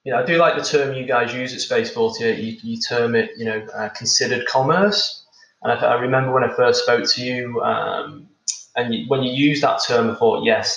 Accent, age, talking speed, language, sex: British, 20-39, 235 wpm, English, male